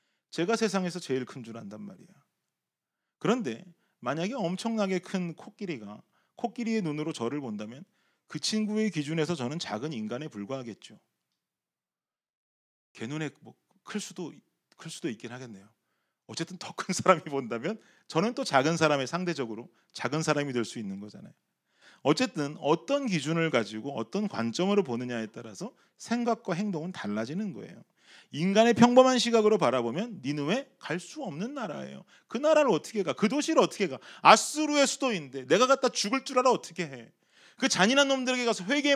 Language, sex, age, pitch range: Korean, male, 30-49, 150-235 Hz